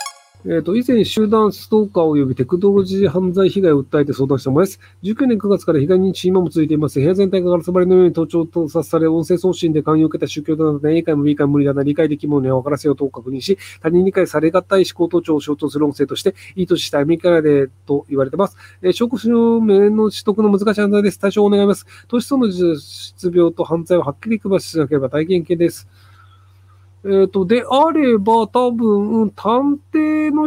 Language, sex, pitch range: Japanese, male, 150-220 Hz